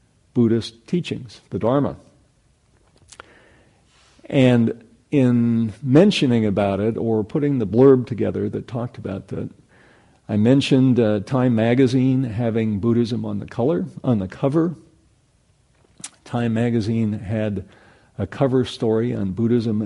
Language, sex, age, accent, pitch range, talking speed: English, male, 50-69, American, 105-125 Hz, 120 wpm